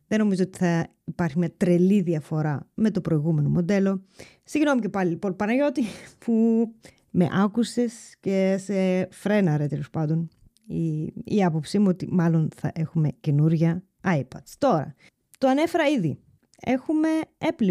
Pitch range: 165-230 Hz